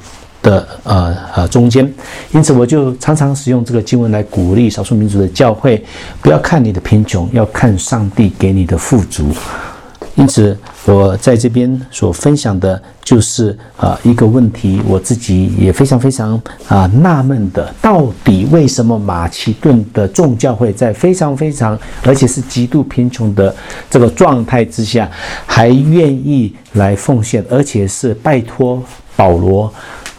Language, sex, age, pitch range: English, male, 50-69, 95-125 Hz